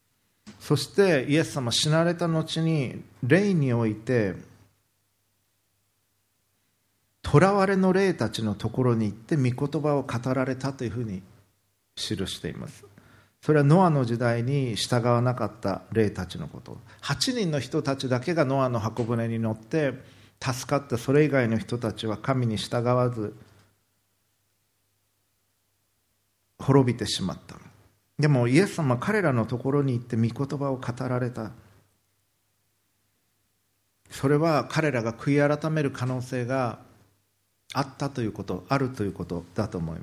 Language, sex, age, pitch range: Japanese, male, 50-69, 105-135 Hz